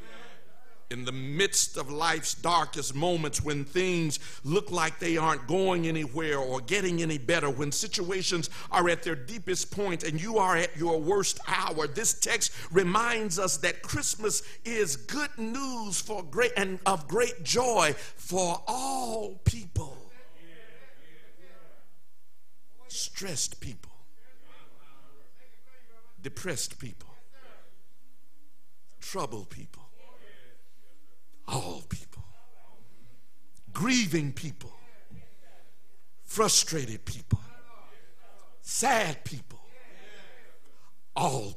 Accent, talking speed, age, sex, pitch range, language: American, 95 wpm, 50-69, male, 155-220 Hz, English